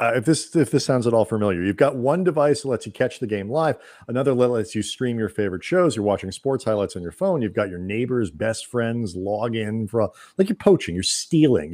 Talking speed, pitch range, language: 255 wpm, 105-135 Hz, English